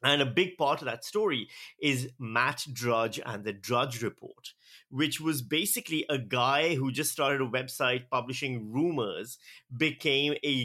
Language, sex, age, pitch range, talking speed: English, male, 30-49, 120-155 Hz, 160 wpm